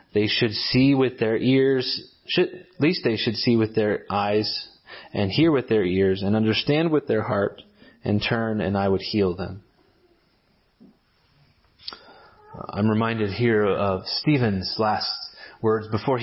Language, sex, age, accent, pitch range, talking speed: English, male, 30-49, American, 105-140 Hz, 145 wpm